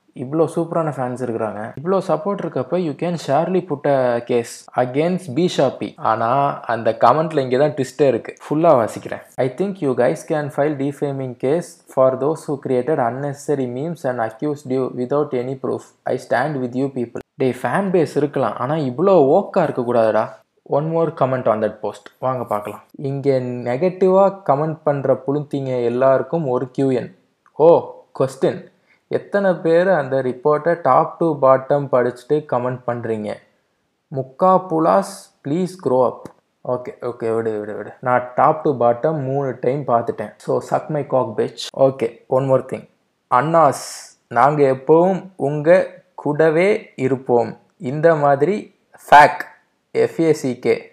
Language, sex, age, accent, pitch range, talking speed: Tamil, male, 20-39, native, 125-160 Hz, 60 wpm